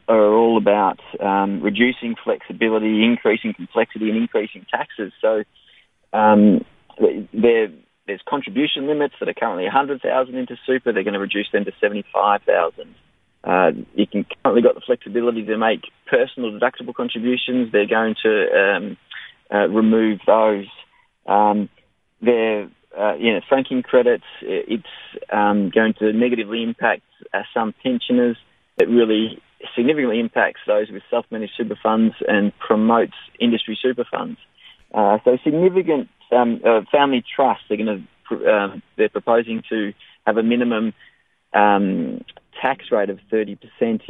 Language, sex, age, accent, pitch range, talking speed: English, male, 20-39, Australian, 105-125 Hz, 135 wpm